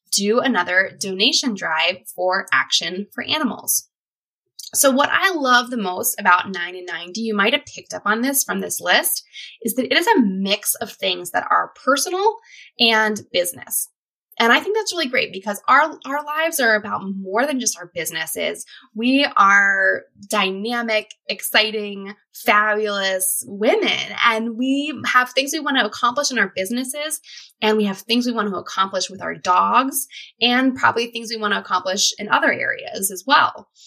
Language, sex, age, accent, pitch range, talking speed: English, female, 20-39, American, 195-260 Hz, 170 wpm